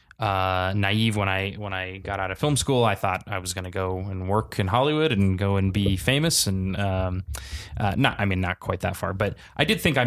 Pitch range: 100-120 Hz